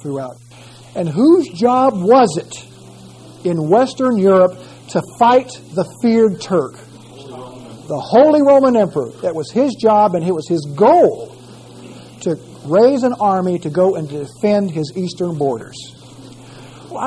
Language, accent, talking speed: English, American, 135 wpm